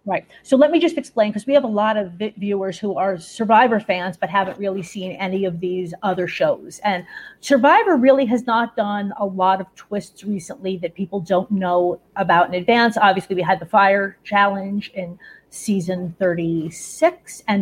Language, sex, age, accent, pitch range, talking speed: English, female, 40-59, American, 180-220 Hz, 185 wpm